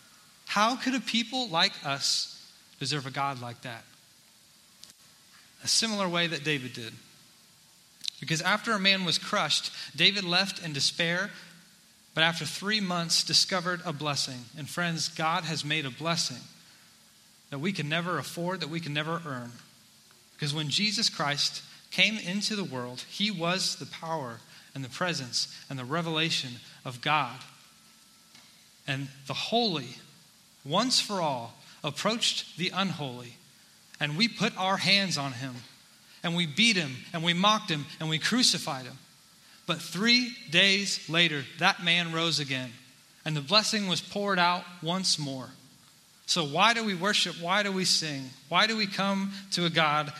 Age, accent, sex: 30-49, American, male